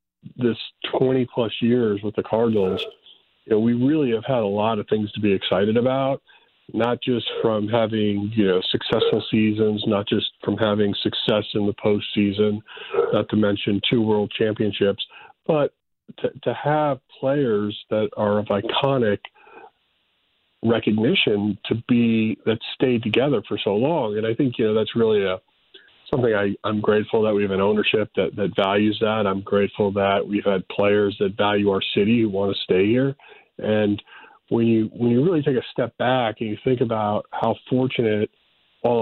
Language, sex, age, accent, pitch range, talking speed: English, male, 40-59, American, 105-125 Hz, 175 wpm